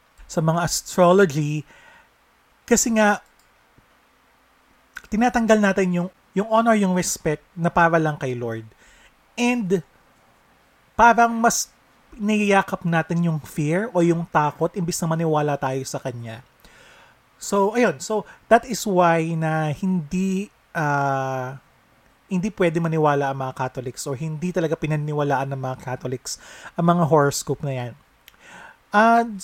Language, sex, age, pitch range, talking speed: English, male, 30-49, 140-190 Hz, 125 wpm